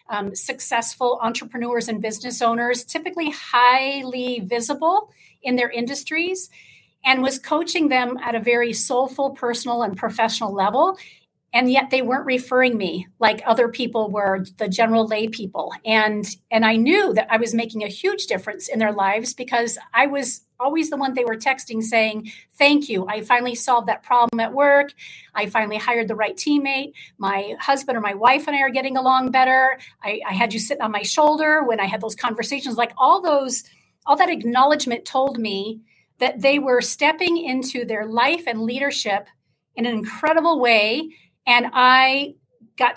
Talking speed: 175 wpm